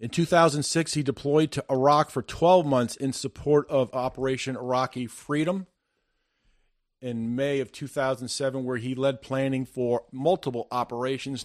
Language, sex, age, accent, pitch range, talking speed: English, male, 40-59, American, 125-150 Hz, 135 wpm